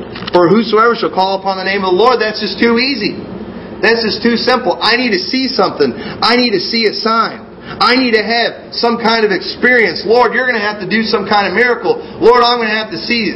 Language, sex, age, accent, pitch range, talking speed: English, male, 40-59, American, 200-235 Hz, 255 wpm